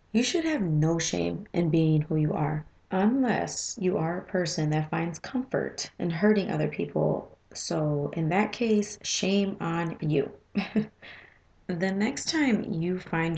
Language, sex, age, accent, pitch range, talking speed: English, female, 30-49, American, 160-210 Hz, 150 wpm